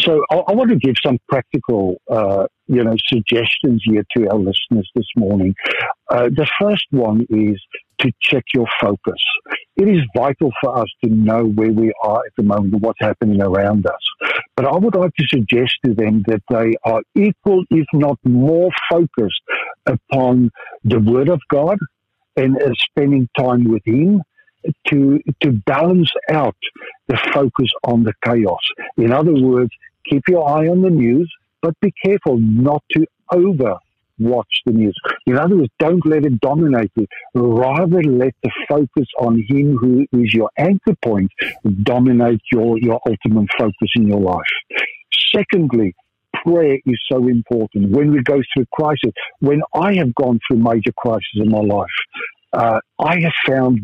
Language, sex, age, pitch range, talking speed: English, male, 60-79, 115-150 Hz, 165 wpm